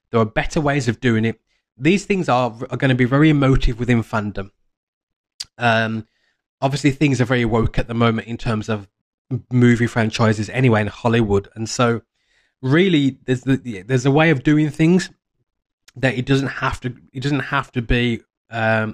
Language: English